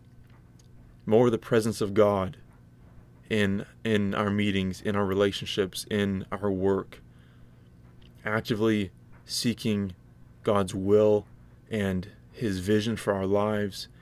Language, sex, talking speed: English, male, 110 wpm